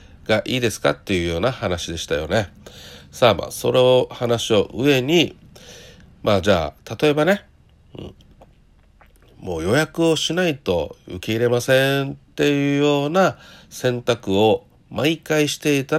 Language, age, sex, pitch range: Japanese, 50-69, male, 95-150 Hz